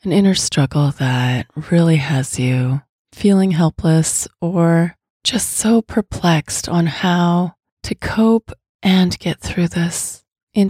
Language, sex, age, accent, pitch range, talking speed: English, female, 30-49, American, 160-185 Hz, 125 wpm